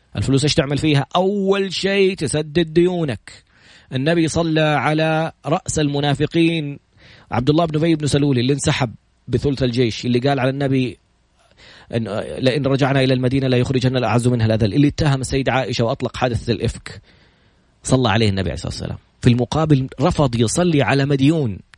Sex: male